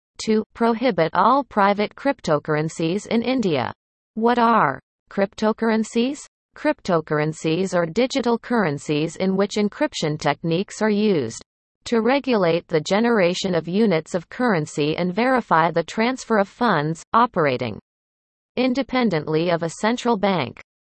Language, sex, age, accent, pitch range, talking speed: English, female, 40-59, American, 170-230 Hz, 115 wpm